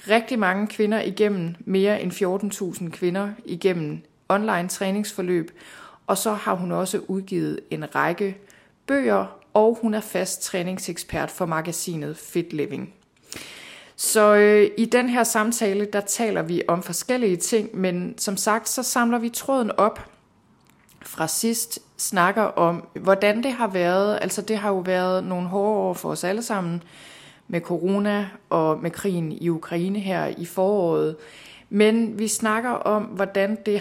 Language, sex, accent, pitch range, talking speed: Danish, female, native, 175-210 Hz, 150 wpm